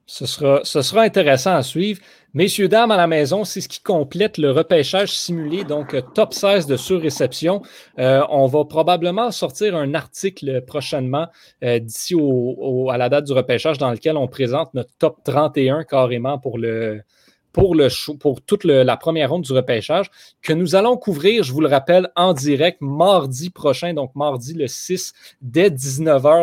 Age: 30-49